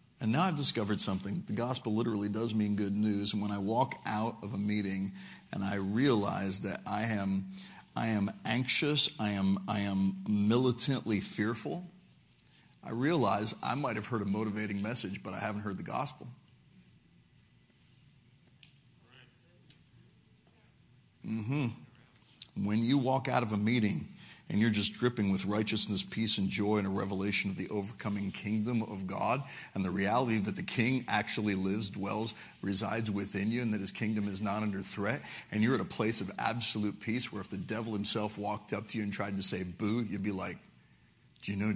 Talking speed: 180 wpm